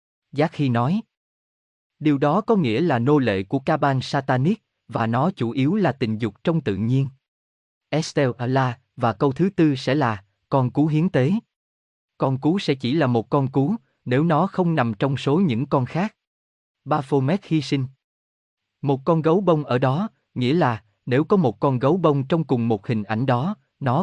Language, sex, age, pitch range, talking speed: Vietnamese, male, 20-39, 115-155 Hz, 190 wpm